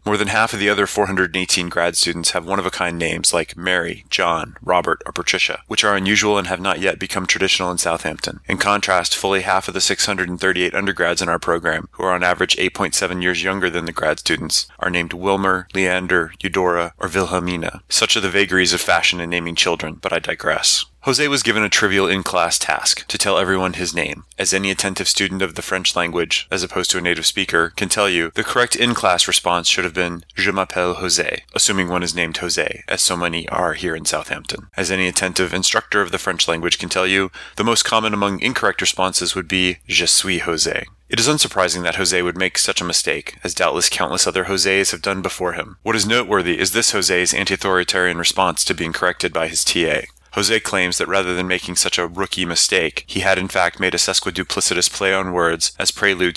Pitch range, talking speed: 90-95 Hz, 210 wpm